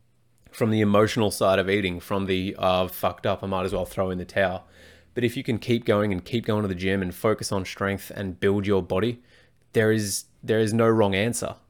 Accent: Australian